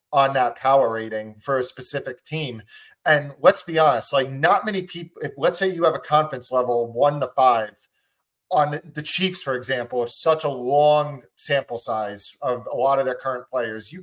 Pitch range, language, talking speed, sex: 125-150 Hz, English, 195 wpm, male